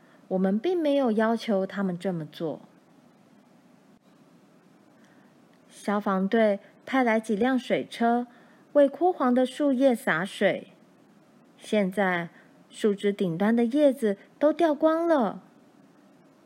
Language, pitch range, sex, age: Chinese, 200-260 Hz, female, 20-39